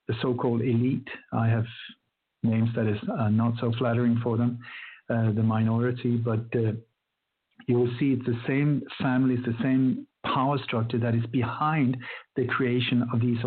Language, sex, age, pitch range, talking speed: English, male, 50-69, 115-130 Hz, 160 wpm